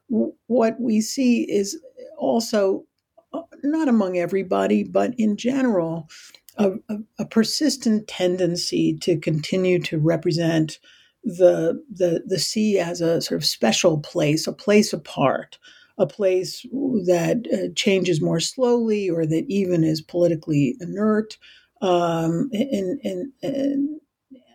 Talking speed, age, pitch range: 120 wpm, 50-69, 165-220 Hz